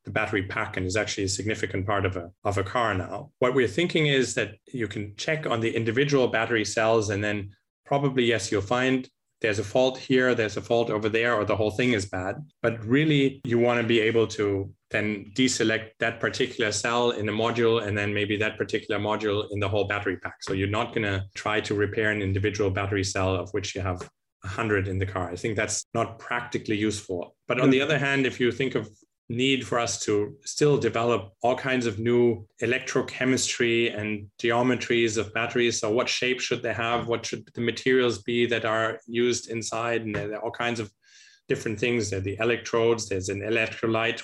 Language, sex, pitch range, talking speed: English, male, 105-120 Hz, 210 wpm